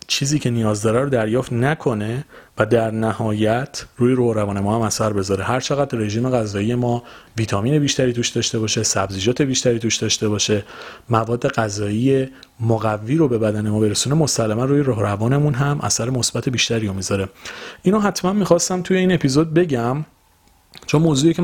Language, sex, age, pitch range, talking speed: Persian, male, 30-49, 105-135 Hz, 170 wpm